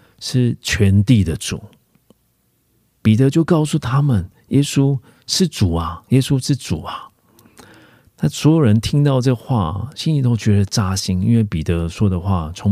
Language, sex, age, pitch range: Korean, male, 40-59, 85-115 Hz